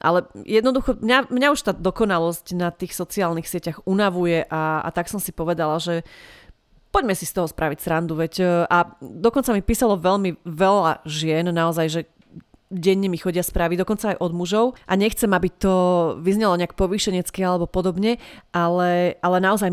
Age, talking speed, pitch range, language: 30-49, 165 wpm, 175-195 Hz, Slovak